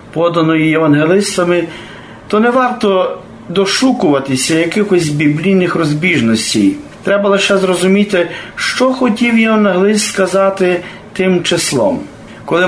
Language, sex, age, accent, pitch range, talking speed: Ukrainian, male, 40-59, native, 165-205 Hz, 90 wpm